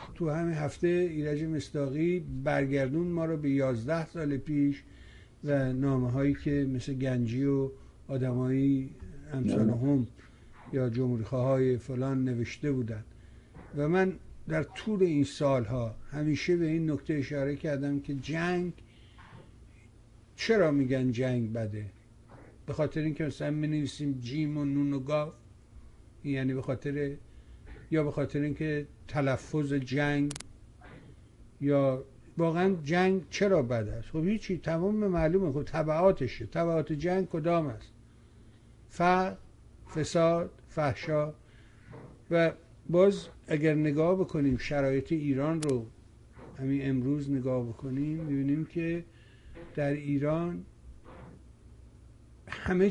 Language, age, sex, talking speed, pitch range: Persian, 60-79, male, 120 wpm, 130-155 Hz